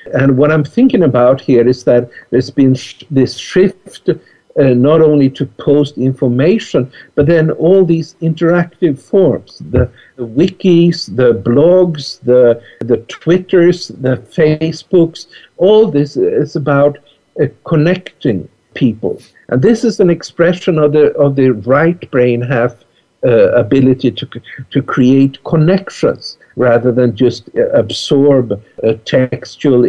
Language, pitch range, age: English, 130-175 Hz, 60-79